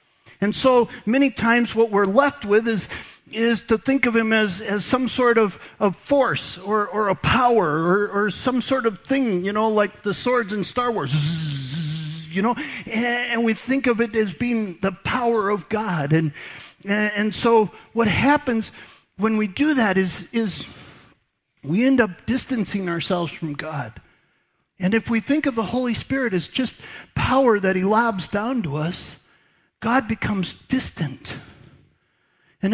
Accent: American